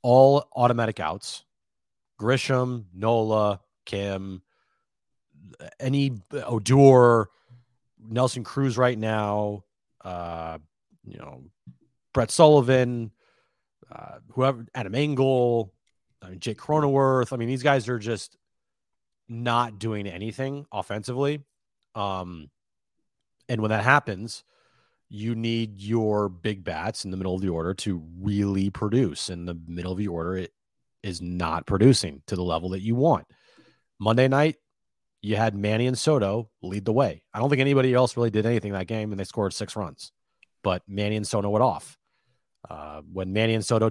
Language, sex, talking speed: English, male, 145 wpm